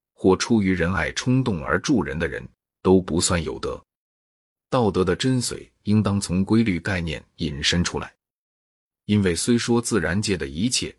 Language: Chinese